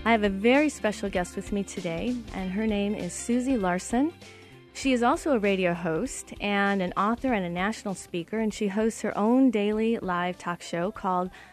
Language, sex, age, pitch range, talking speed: English, female, 40-59, 185-225 Hz, 200 wpm